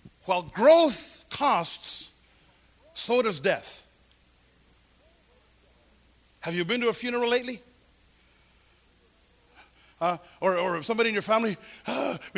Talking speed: 110 wpm